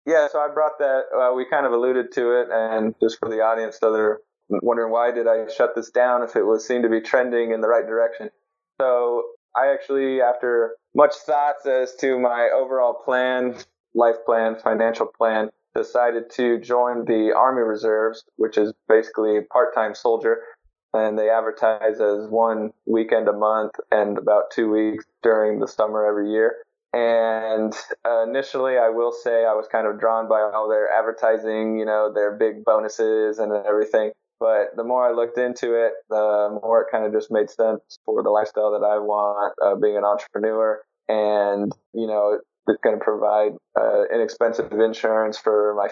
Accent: American